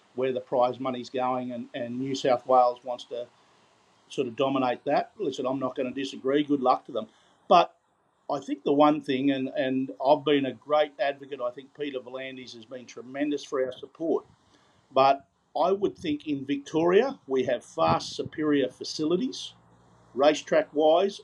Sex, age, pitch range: male, 50-69, 130-150 Hz